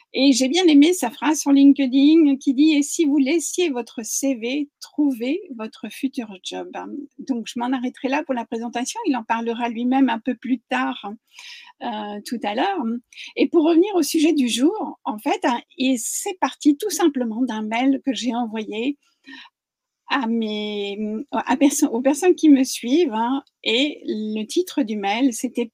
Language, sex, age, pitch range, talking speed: French, female, 50-69, 235-305 Hz, 180 wpm